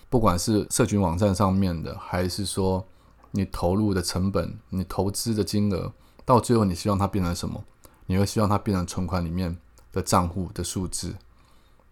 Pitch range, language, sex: 90-115 Hz, Chinese, male